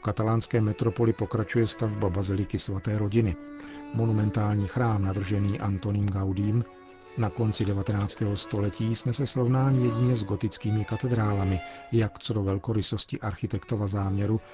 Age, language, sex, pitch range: 40-59, Czech, male, 100-115 Hz